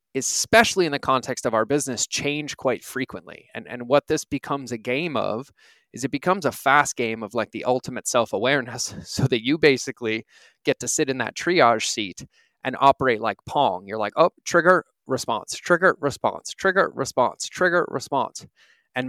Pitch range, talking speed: 115-140 Hz, 175 wpm